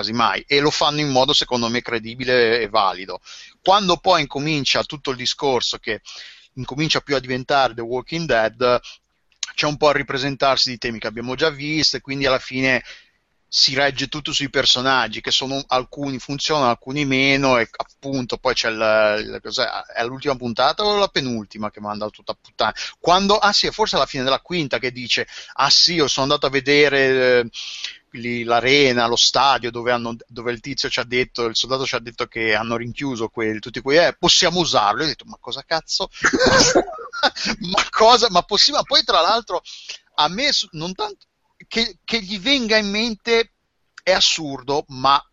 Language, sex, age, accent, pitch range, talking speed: Italian, male, 30-49, native, 125-170 Hz, 180 wpm